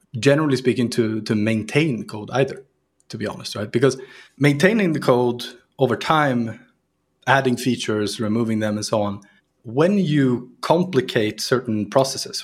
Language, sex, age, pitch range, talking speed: Bulgarian, male, 30-49, 105-135 Hz, 140 wpm